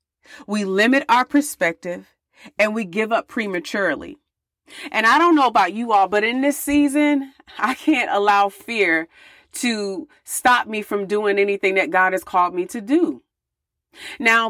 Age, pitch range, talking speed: 30-49, 195-290 Hz, 155 wpm